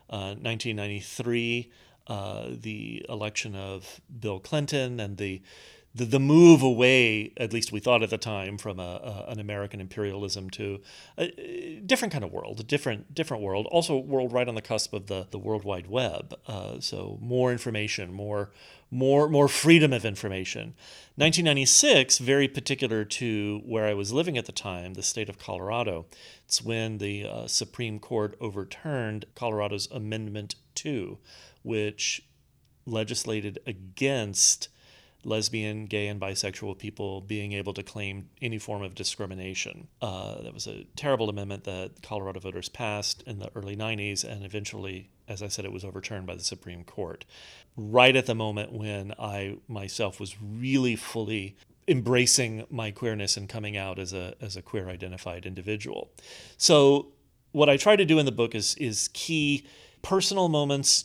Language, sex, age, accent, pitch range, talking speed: English, male, 40-59, American, 100-125 Hz, 155 wpm